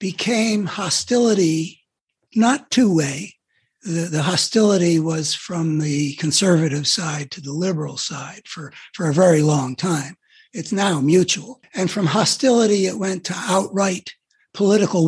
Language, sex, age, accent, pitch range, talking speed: English, male, 60-79, American, 170-215 Hz, 130 wpm